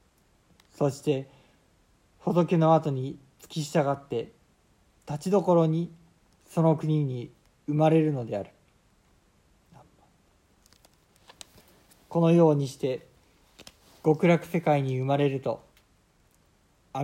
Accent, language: native, Japanese